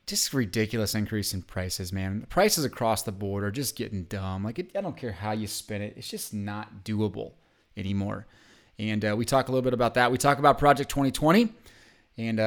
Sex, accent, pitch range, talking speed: male, American, 105-125 Hz, 210 wpm